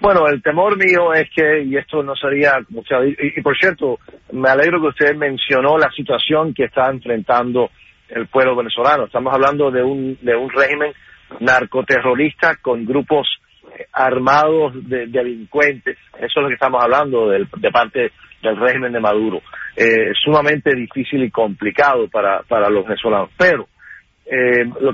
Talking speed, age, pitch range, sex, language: 155 wpm, 50-69, 125-155 Hz, male, English